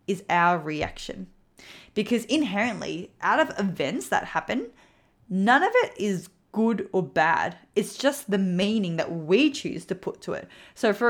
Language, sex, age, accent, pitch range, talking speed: English, female, 10-29, Australian, 175-215 Hz, 160 wpm